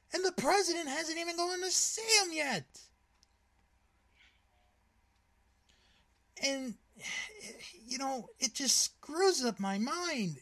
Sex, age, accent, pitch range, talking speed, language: male, 30-49, American, 225-305 Hz, 110 wpm, English